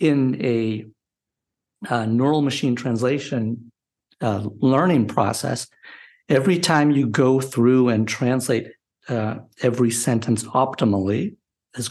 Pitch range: 115-140 Hz